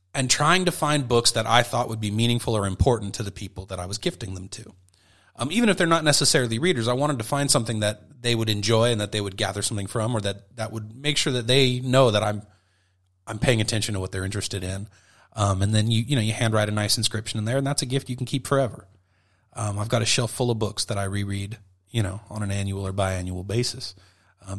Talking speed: 255 wpm